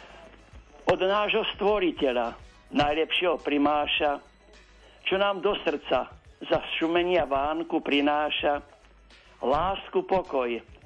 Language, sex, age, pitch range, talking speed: Slovak, male, 60-79, 150-185 Hz, 85 wpm